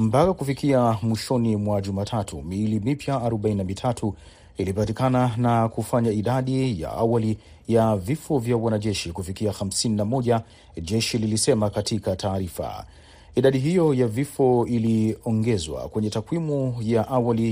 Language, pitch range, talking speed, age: Swahili, 105-125 Hz, 110 wpm, 40-59